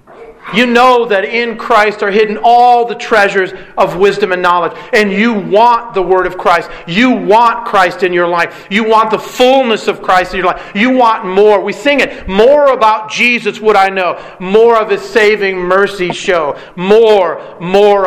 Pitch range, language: 180-225 Hz, English